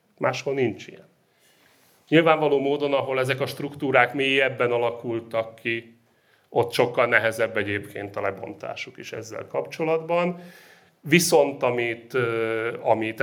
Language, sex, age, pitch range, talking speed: Hungarian, male, 30-49, 115-140 Hz, 110 wpm